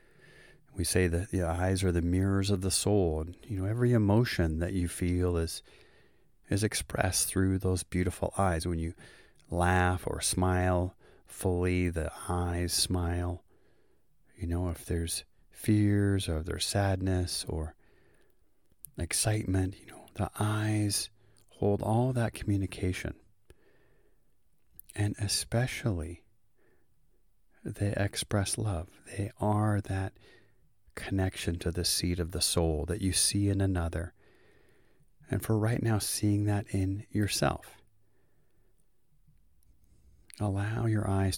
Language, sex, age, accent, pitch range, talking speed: English, male, 30-49, American, 85-105 Hz, 120 wpm